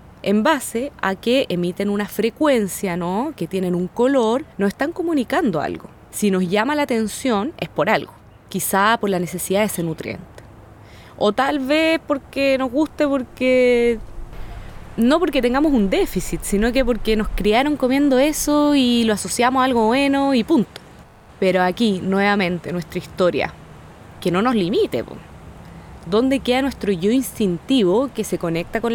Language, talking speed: Spanish, 155 wpm